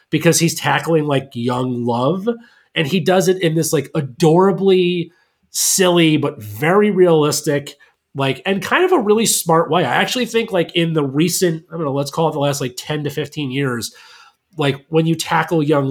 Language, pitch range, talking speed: English, 135-170 Hz, 190 wpm